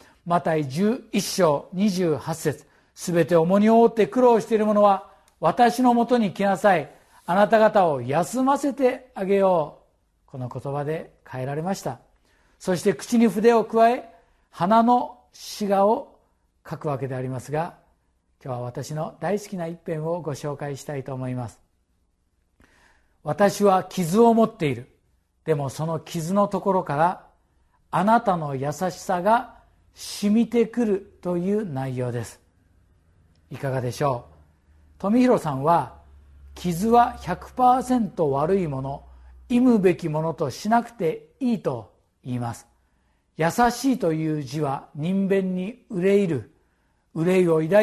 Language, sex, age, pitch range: Japanese, male, 50-69, 135-215 Hz